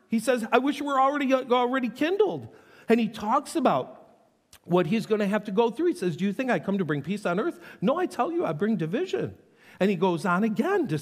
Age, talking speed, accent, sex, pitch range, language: 50-69, 250 wpm, American, male, 180-250 Hz, English